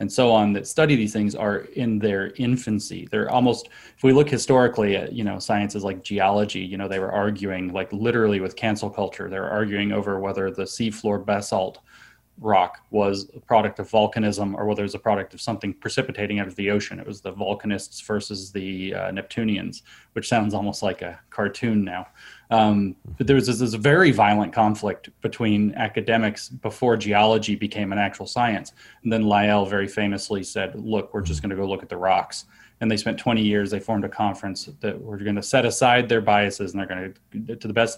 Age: 20-39